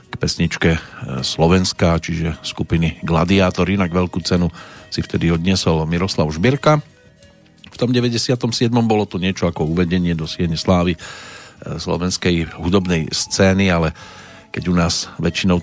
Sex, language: male, Slovak